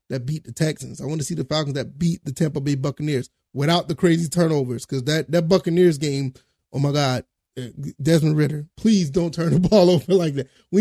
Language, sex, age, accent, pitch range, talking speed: English, male, 20-39, American, 150-190 Hz, 215 wpm